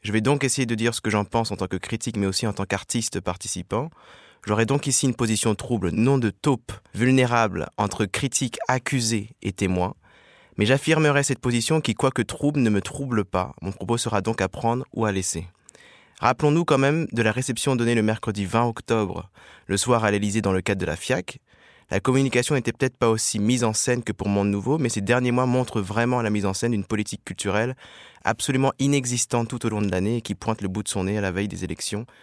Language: French